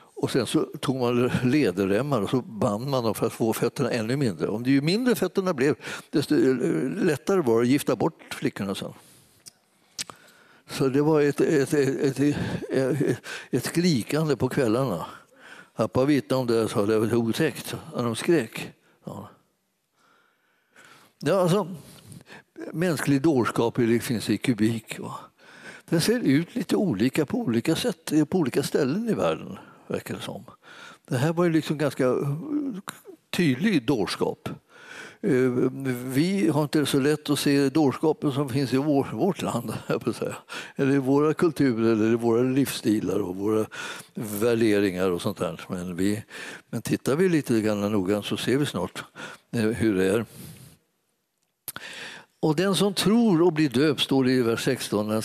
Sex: male